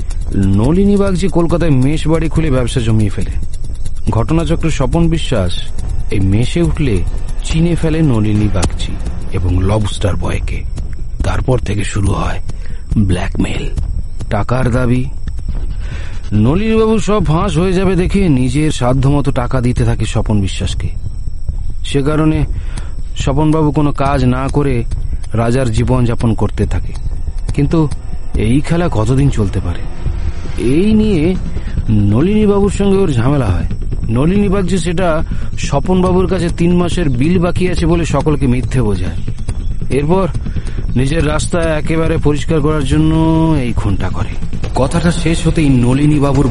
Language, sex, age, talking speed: Bengali, male, 40-59, 65 wpm